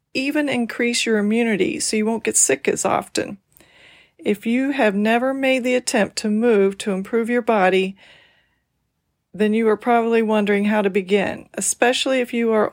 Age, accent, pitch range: 40-59, American, 195-235 Hz